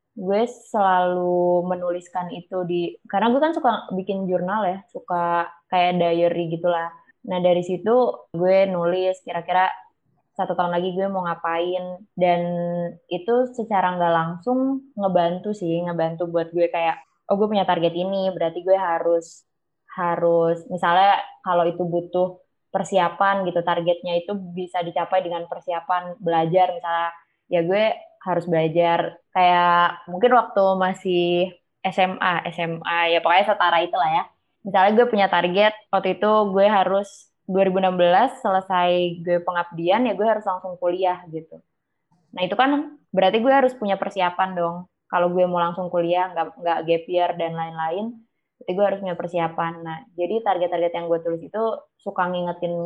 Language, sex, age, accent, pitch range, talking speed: Indonesian, female, 20-39, native, 170-195 Hz, 145 wpm